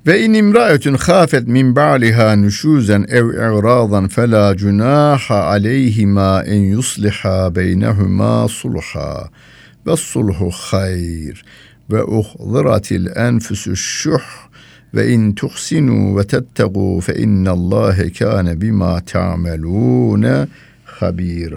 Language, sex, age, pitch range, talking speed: Turkish, male, 60-79, 95-125 Hz, 85 wpm